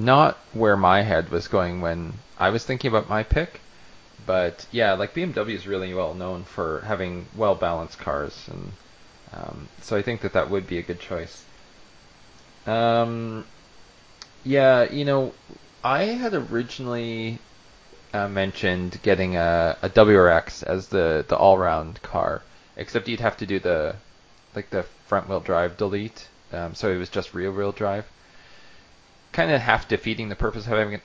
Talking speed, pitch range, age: 155 wpm, 90-115 Hz, 20-39